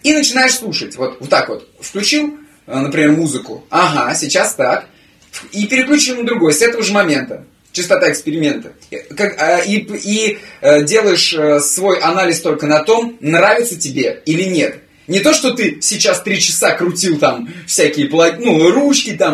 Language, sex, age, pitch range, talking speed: Russian, male, 20-39, 150-205 Hz, 145 wpm